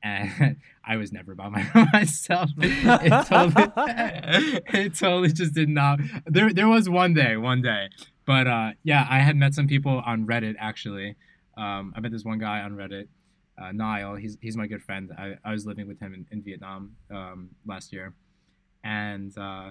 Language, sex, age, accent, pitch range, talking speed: English, male, 20-39, American, 100-125 Hz, 180 wpm